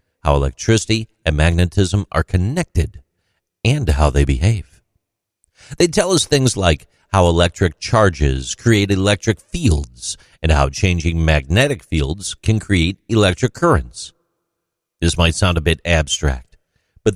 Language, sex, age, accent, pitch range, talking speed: English, male, 50-69, American, 80-115 Hz, 130 wpm